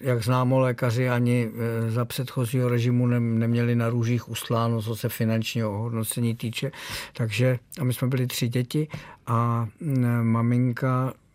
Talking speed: 125 wpm